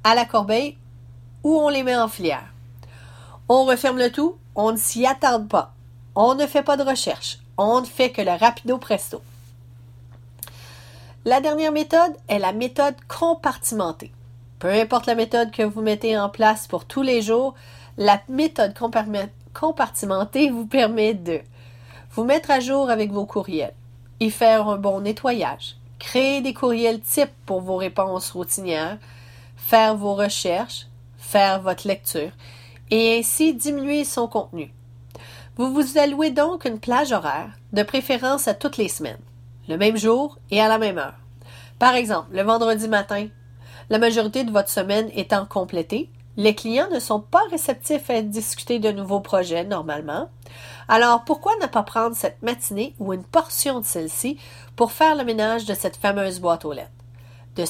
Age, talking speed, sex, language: 40-59, 160 wpm, female, French